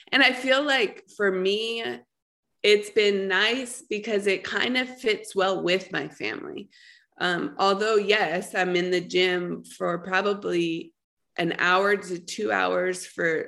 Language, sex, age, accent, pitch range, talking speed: English, female, 20-39, American, 170-215 Hz, 145 wpm